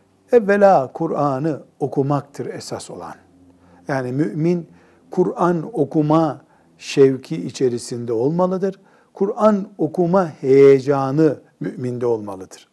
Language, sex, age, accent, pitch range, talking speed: Turkish, male, 60-79, native, 140-180 Hz, 80 wpm